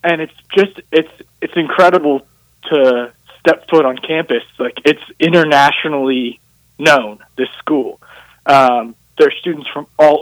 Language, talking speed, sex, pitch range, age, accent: English, 135 wpm, male, 130-170 Hz, 20-39, American